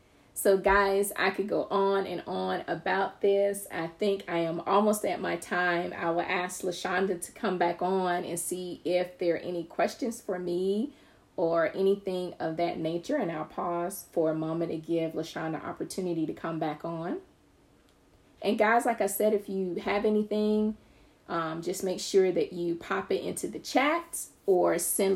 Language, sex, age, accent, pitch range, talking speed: English, female, 30-49, American, 175-195 Hz, 180 wpm